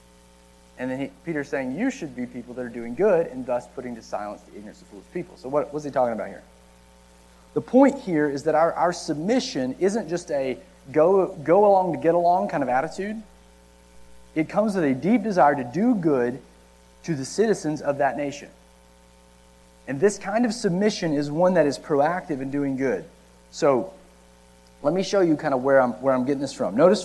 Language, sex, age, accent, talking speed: English, male, 30-49, American, 190 wpm